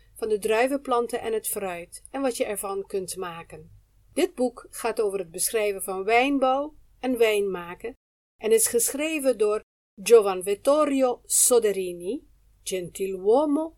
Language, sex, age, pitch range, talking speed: Dutch, female, 50-69, 200-285 Hz, 130 wpm